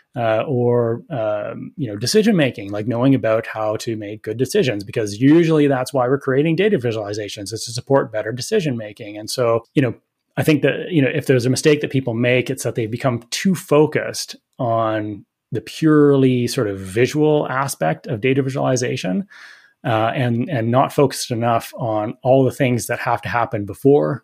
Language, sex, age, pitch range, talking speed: German, male, 30-49, 110-135 Hz, 190 wpm